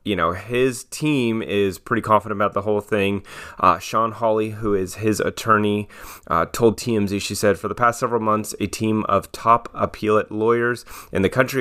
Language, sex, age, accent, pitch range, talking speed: English, male, 30-49, American, 90-110 Hz, 190 wpm